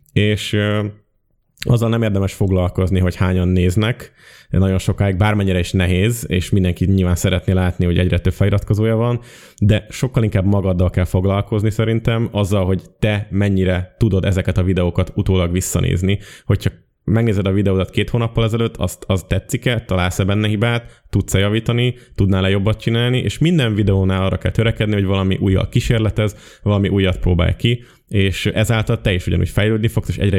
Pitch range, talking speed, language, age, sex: 95-115 Hz, 160 wpm, Hungarian, 20-39, male